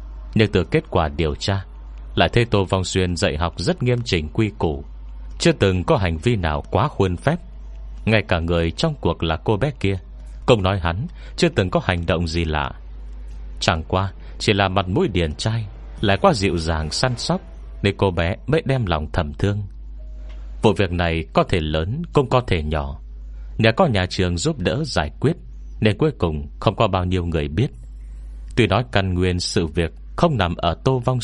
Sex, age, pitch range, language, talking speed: male, 30-49, 75-105 Hz, Vietnamese, 205 wpm